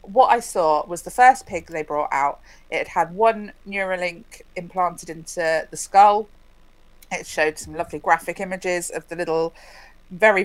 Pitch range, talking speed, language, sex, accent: 160-200 Hz, 165 wpm, English, female, British